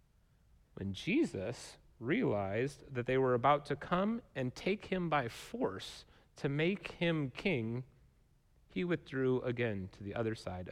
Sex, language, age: male, English, 30-49